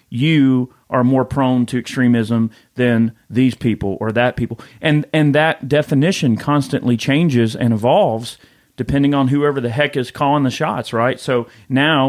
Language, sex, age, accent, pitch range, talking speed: English, male, 40-59, American, 120-145 Hz, 160 wpm